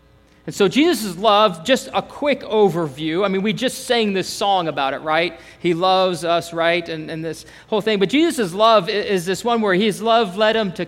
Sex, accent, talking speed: male, American, 215 wpm